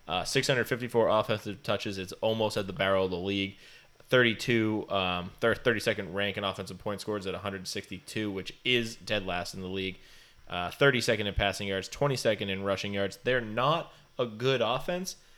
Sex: male